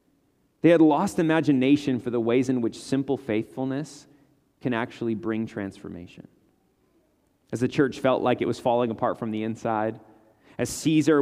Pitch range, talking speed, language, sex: 130-165 Hz, 155 wpm, English, male